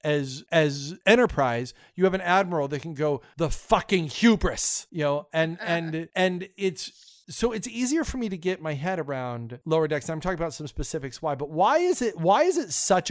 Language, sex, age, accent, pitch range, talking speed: English, male, 40-59, American, 150-210 Hz, 205 wpm